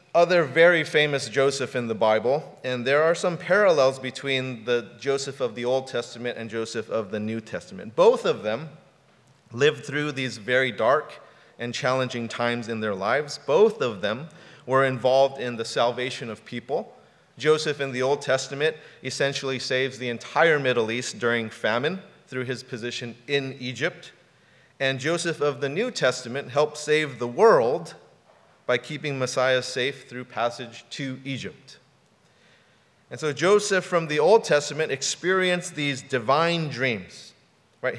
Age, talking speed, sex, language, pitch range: 30-49, 155 wpm, male, English, 125-155 Hz